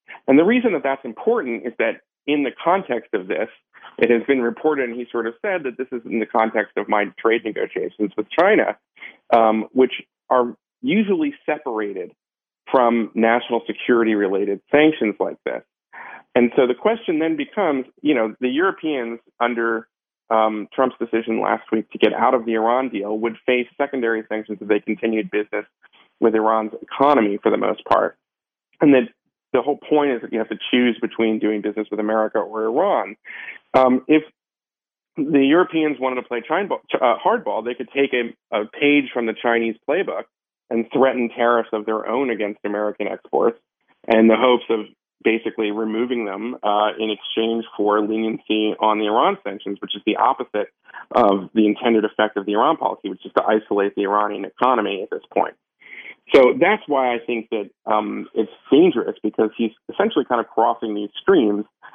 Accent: American